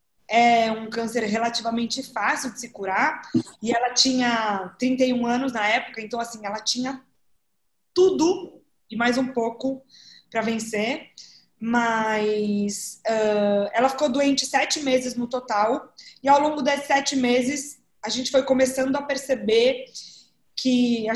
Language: Portuguese